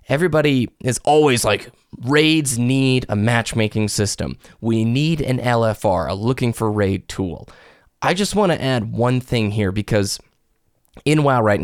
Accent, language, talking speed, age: American, English, 155 wpm, 20-39